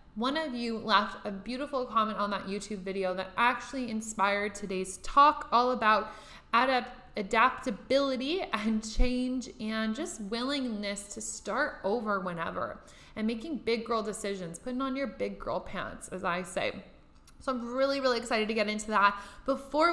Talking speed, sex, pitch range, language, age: 155 wpm, female, 210-255 Hz, English, 20-39